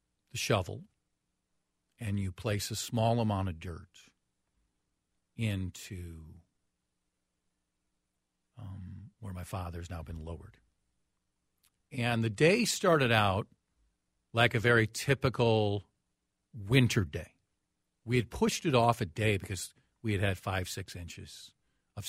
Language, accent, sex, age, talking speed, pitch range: English, American, male, 50-69, 120 wpm, 80-115 Hz